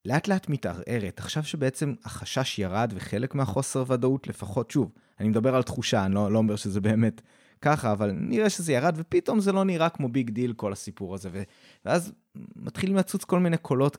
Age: 20-39